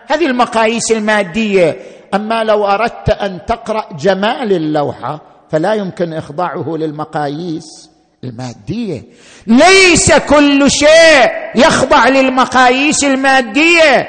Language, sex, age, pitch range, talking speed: Arabic, male, 50-69, 175-250 Hz, 90 wpm